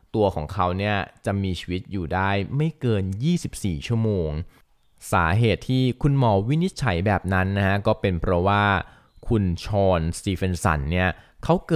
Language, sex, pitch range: Thai, male, 95-115 Hz